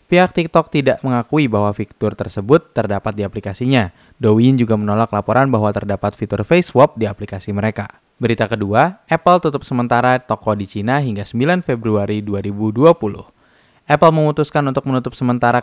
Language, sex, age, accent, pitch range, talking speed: Indonesian, male, 20-39, native, 105-145 Hz, 150 wpm